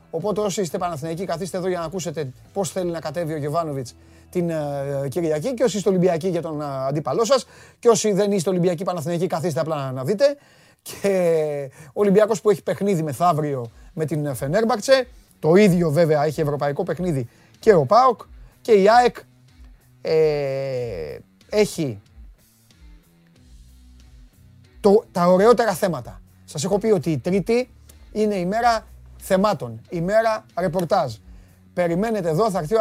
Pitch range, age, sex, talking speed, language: 155-205 Hz, 30-49, male, 105 wpm, Greek